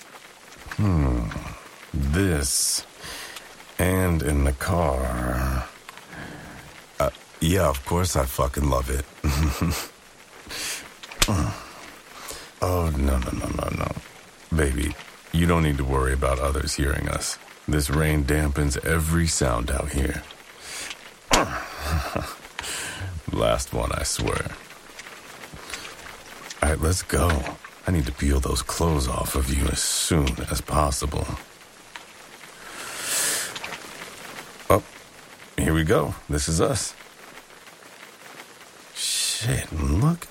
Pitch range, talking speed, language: 70-85 Hz, 100 wpm, English